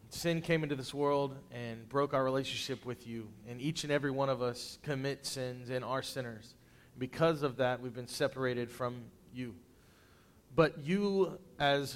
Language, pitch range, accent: English, 120-140 Hz, American